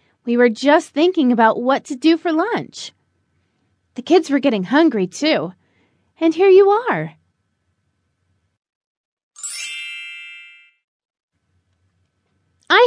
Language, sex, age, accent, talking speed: English, female, 30-49, American, 100 wpm